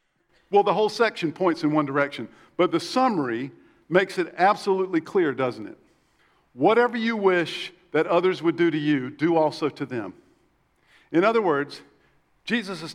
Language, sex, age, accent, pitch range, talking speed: English, male, 50-69, American, 170-225 Hz, 160 wpm